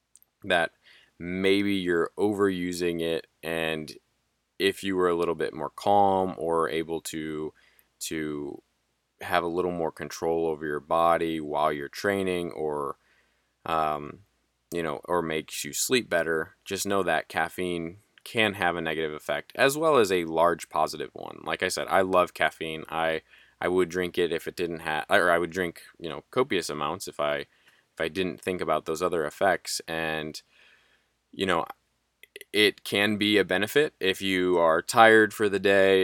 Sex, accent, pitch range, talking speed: male, American, 80-95 Hz, 170 wpm